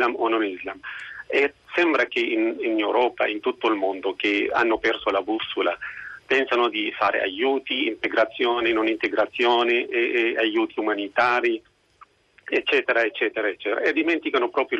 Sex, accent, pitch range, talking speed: male, native, 330-395 Hz, 145 wpm